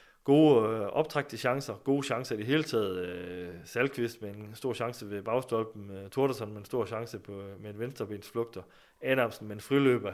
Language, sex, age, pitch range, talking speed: Danish, male, 30-49, 105-145 Hz, 190 wpm